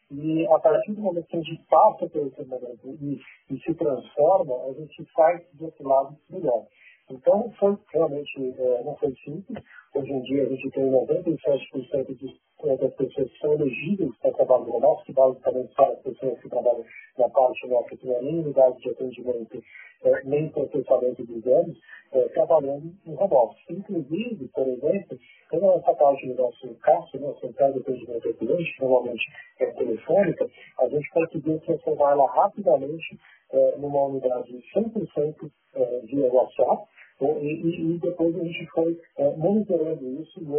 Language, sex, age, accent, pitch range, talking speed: Portuguese, male, 40-59, Brazilian, 135-180 Hz, 165 wpm